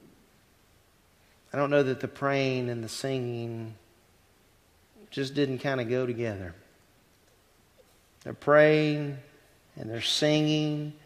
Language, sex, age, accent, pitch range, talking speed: English, male, 40-59, American, 110-175 Hz, 110 wpm